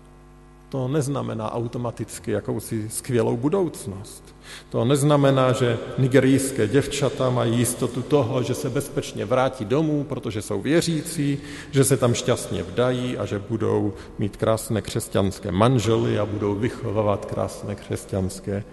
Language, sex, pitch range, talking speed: Slovak, male, 110-135 Hz, 125 wpm